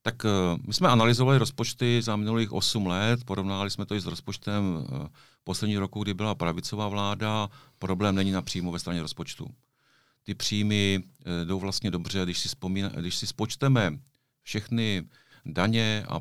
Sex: male